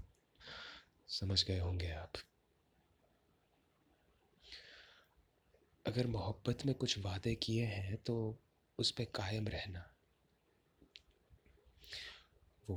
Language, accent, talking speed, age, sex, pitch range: Hindi, native, 80 wpm, 30-49, male, 90-100 Hz